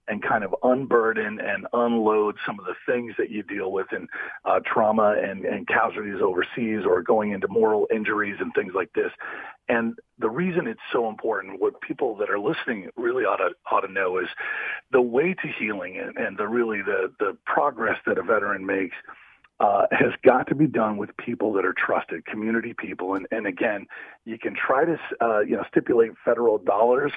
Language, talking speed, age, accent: English, 195 wpm, 40-59, American